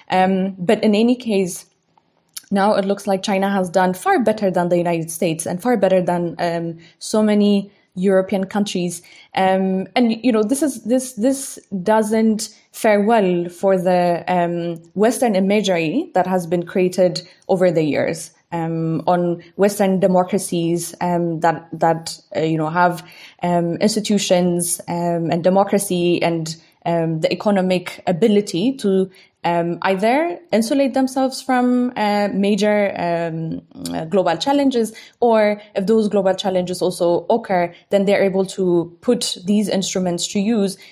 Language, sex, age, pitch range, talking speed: English, female, 20-39, 175-210 Hz, 145 wpm